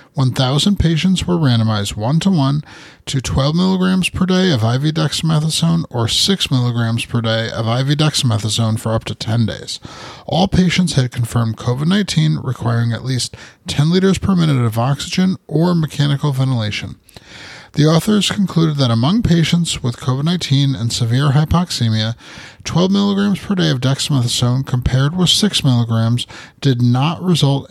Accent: American